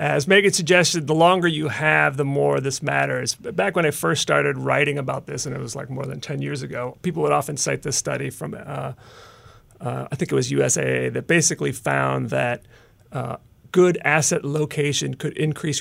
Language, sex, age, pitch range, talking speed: English, male, 30-49, 115-160 Hz, 195 wpm